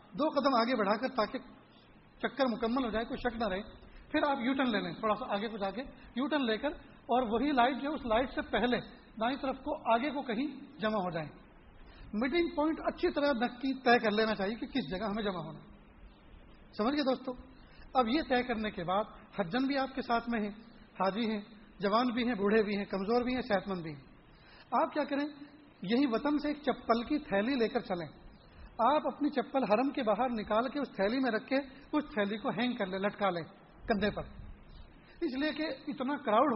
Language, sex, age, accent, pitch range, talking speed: English, male, 30-49, Indian, 215-270 Hz, 170 wpm